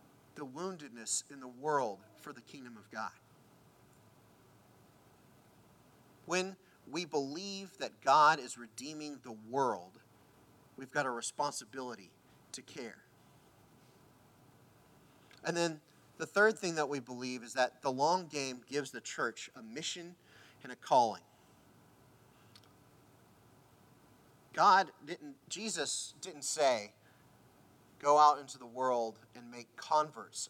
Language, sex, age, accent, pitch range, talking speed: English, male, 30-49, American, 125-175 Hz, 115 wpm